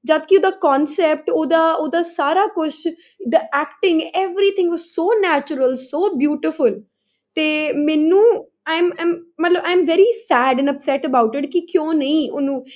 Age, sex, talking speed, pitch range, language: 10-29, female, 145 wpm, 240-305 Hz, Punjabi